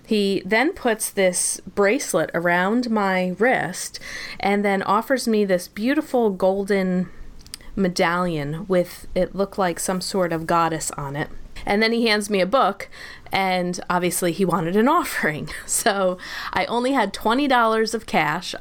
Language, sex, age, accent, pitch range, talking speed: English, female, 30-49, American, 175-215 Hz, 150 wpm